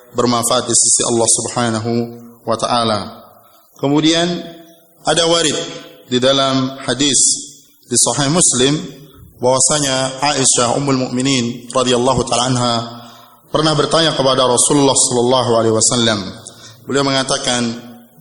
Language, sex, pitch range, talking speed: Indonesian, male, 120-150 Hz, 100 wpm